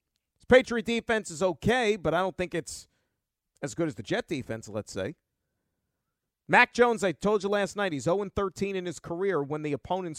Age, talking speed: 40-59, 190 wpm